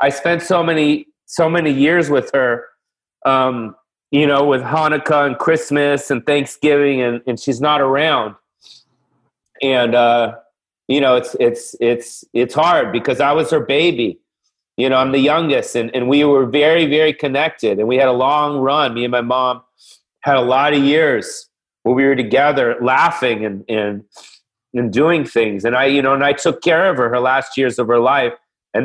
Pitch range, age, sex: 125-150 Hz, 40-59, male